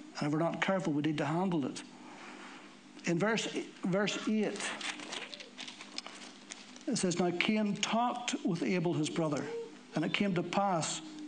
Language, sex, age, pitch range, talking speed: English, male, 60-79, 165-255 Hz, 150 wpm